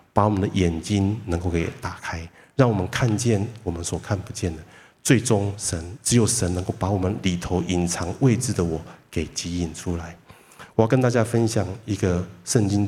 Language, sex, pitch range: Chinese, male, 90-115 Hz